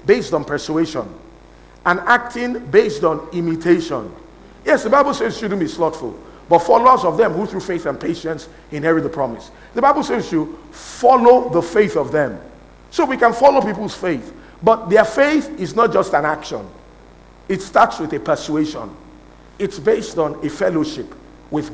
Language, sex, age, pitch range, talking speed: English, male, 50-69, 155-230 Hz, 175 wpm